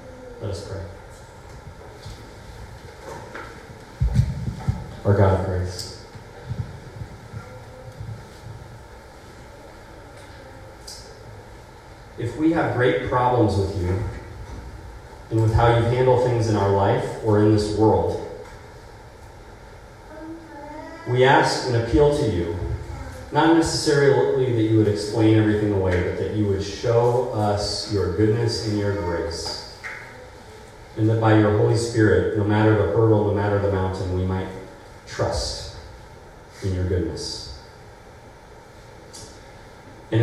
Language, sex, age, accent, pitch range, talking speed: English, male, 40-59, American, 100-115 Hz, 110 wpm